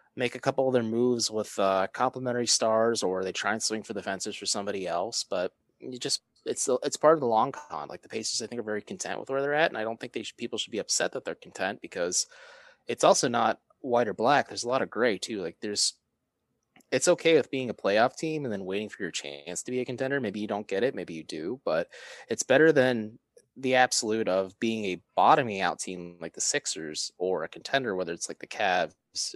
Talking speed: 245 wpm